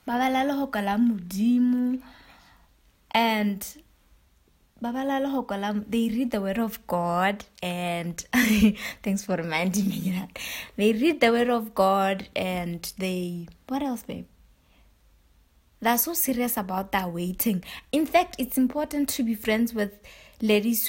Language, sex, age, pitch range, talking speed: English, female, 20-39, 200-250 Hz, 110 wpm